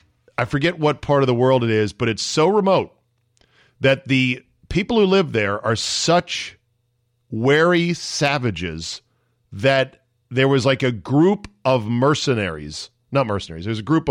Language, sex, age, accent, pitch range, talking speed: English, male, 40-59, American, 105-135 Hz, 155 wpm